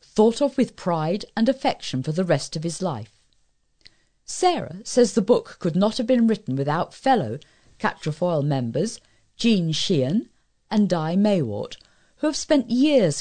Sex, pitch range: female, 160-245 Hz